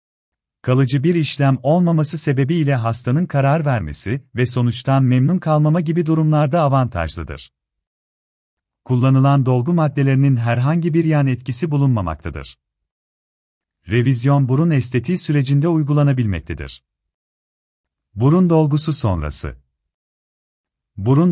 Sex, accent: male, native